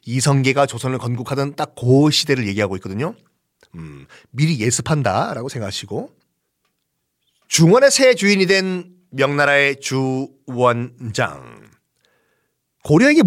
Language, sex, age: Korean, male, 40-59